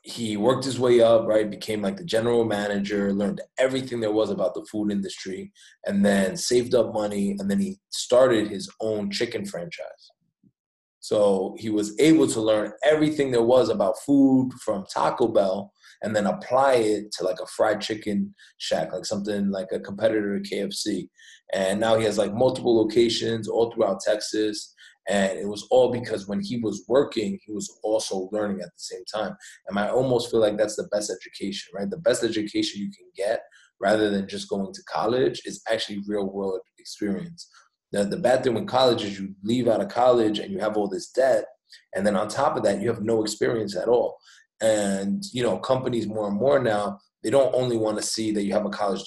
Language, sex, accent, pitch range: English, male, American, 100-125 Hz